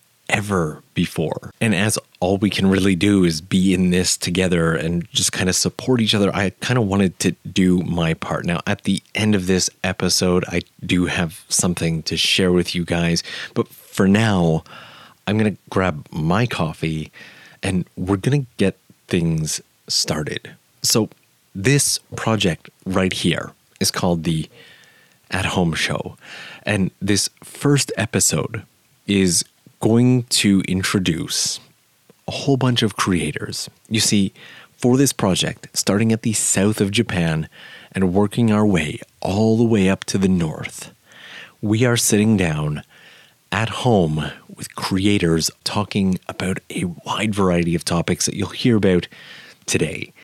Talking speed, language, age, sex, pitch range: 150 wpm, English, 30-49, male, 90-110 Hz